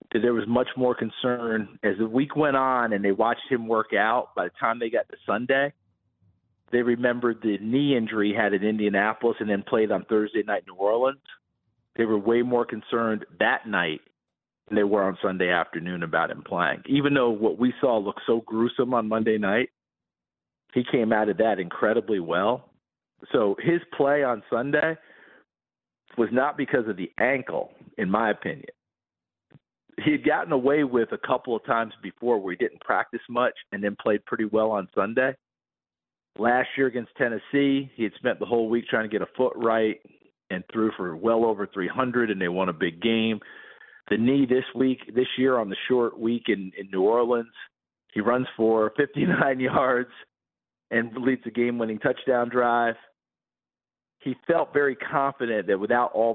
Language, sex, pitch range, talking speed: English, male, 105-125 Hz, 185 wpm